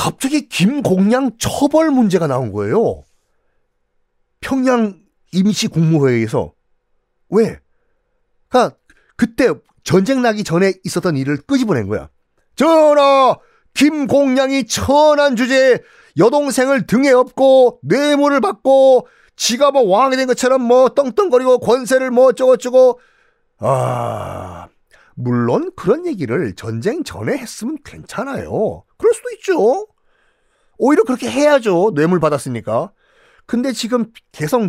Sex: male